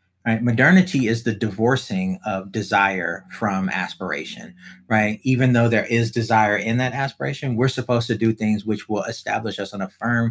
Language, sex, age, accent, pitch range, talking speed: English, male, 30-49, American, 105-160 Hz, 175 wpm